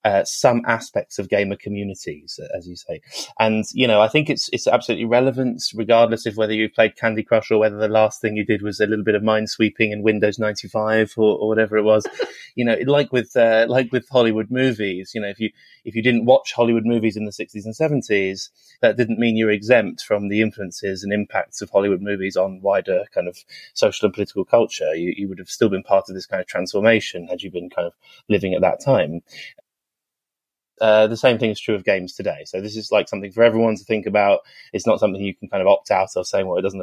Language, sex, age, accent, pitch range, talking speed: English, male, 20-39, British, 105-115 Hz, 240 wpm